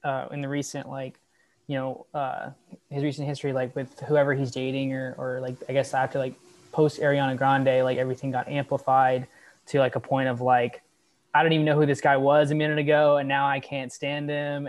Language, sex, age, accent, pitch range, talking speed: English, male, 20-39, American, 140-160 Hz, 215 wpm